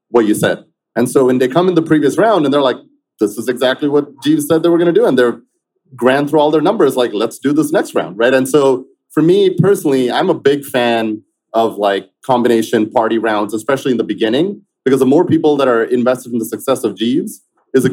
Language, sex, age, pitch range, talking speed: English, male, 30-49, 115-150 Hz, 240 wpm